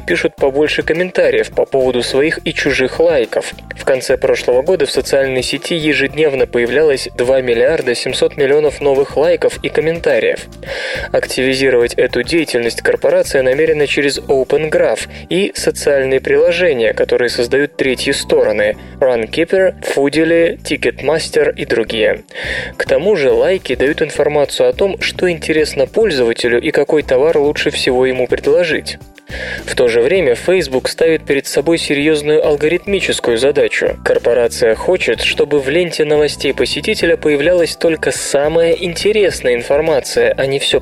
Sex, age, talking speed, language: male, 20-39, 130 wpm, Russian